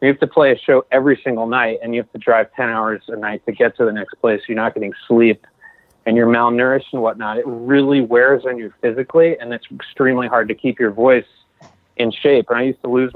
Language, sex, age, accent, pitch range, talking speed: English, male, 30-49, American, 120-145 Hz, 245 wpm